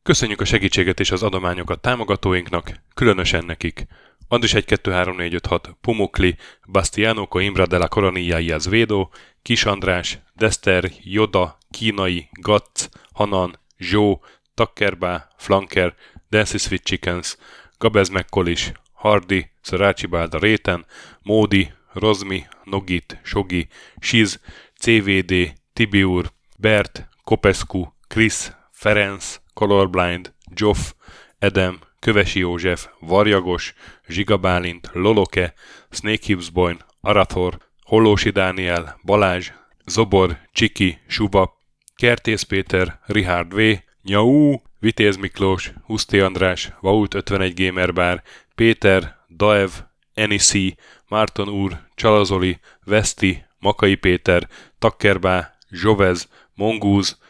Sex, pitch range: male, 90-105 Hz